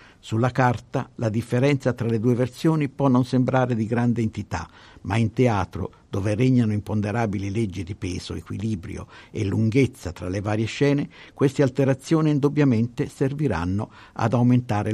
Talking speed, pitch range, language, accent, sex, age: 145 wpm, 100-135 Hz, Italian, native, male, 60-79